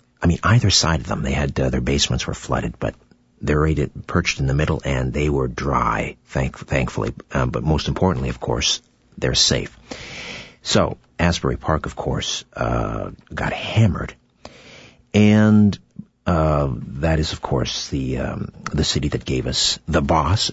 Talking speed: 165 wpm